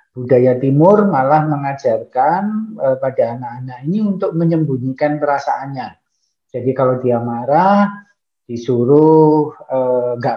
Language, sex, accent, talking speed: Indonesian, male, native, 100 wpm